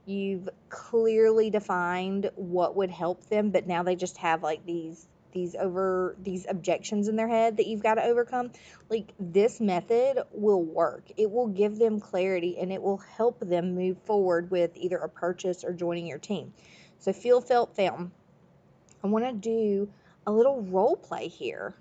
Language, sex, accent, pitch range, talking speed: English, female, American, 180-215 Hz, 175 wpm